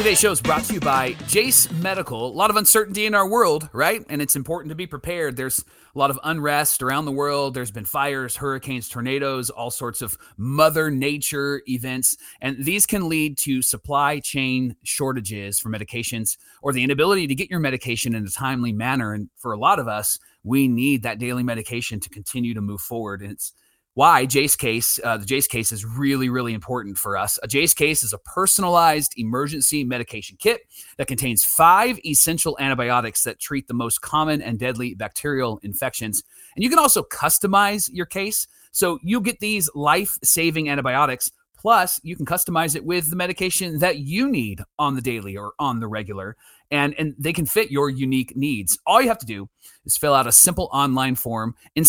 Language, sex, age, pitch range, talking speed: English, male, 30-49, 120-155 Hz, 195 wpm